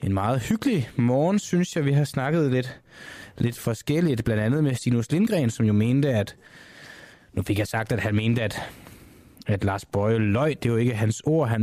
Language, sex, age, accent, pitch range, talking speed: Danish, male, 20-39, native, 105-125 Hz, 205 wpm